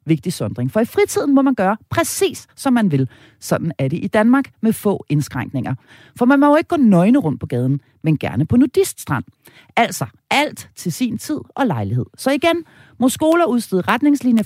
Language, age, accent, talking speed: Danish, 40-59, native, 195 wpm